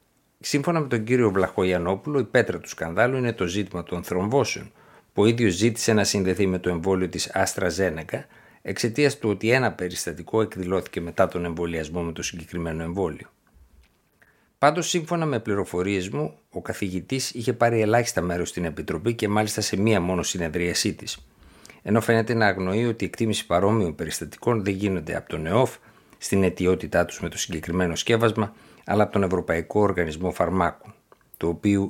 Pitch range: 85-115 Hz